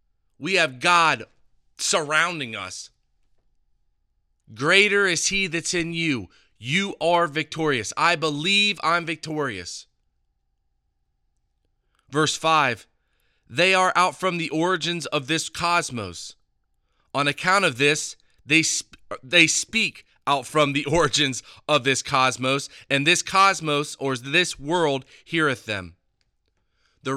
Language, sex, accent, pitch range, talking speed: English, male, American, 115-170 Hz, 115 wpm